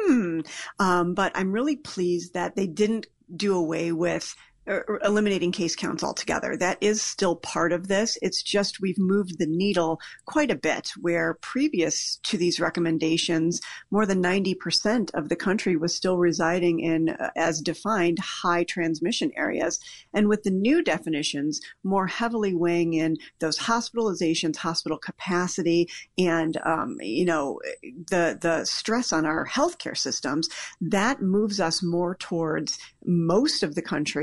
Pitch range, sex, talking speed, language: 165-200 Hz, female, 145 wpm, English